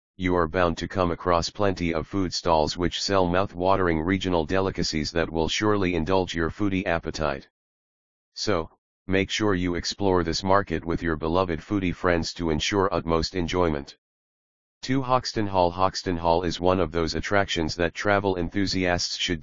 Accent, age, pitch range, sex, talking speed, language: American, 40-59, 80-95 Hz, male, 160 wpm, English